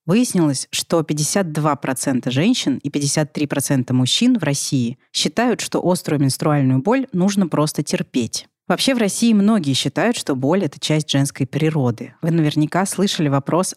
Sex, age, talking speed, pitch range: female, 30-49, 140 wpm, 140-175 Hz